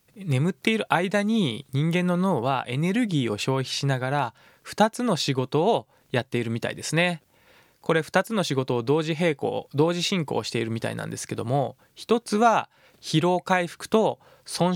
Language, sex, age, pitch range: Japanese, male, 20-39, 125-180 Hz